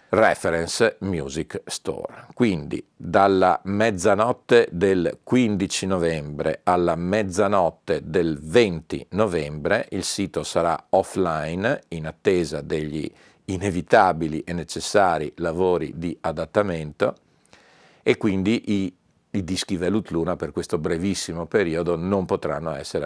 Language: Italian